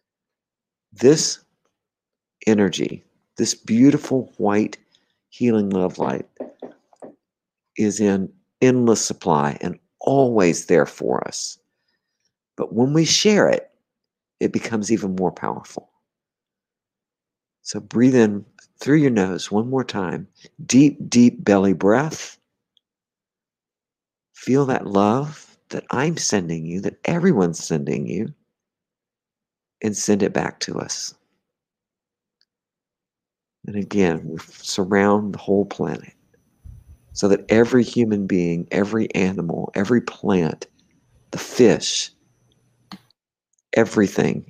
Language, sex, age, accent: English, male, 50-69, American